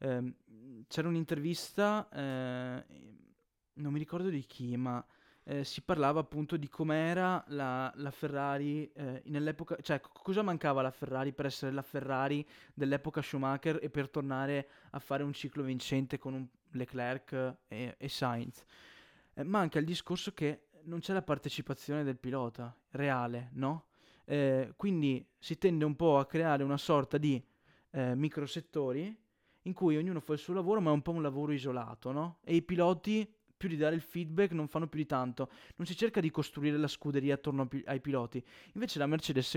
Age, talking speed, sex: 20-39, 165 wpm, male